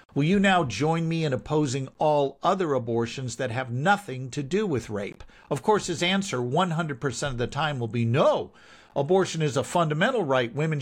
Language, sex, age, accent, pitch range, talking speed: English, male, 50-69, American, 125-170 Hz, 190 wpm